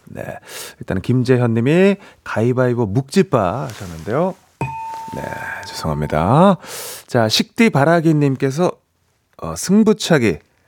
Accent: native